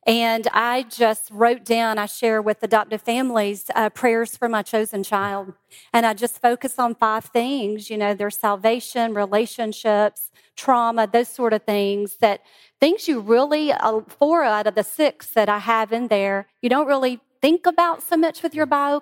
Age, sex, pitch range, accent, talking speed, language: 40-59, female, 210-250 Hz, American, 185 wpm, English